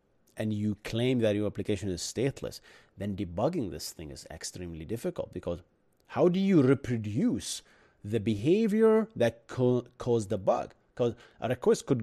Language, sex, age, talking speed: English, male, 30-49, 150 wpm